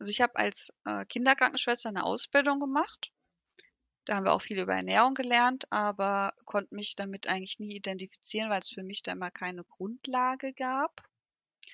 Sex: female